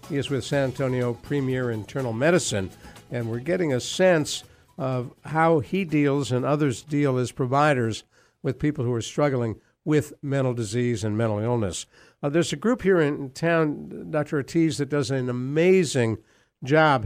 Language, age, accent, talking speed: English, 60-79, American, 165 wpm